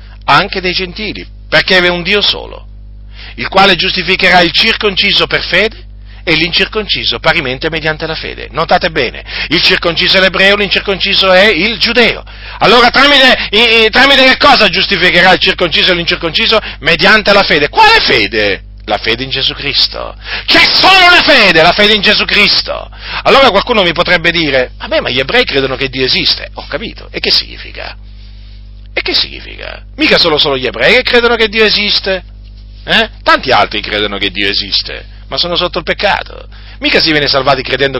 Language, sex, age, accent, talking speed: Italian, male, 40-59, native, 170 wpm